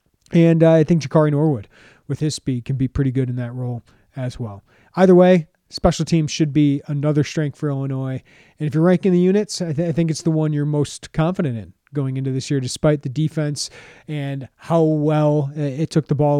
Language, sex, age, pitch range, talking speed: English, male, 30-49, 135-165 Hz, 215 wpm